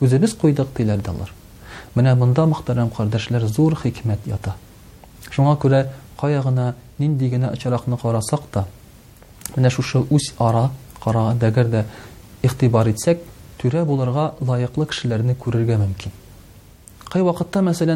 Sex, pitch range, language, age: male, 110-145 Hz, Russian, 40-59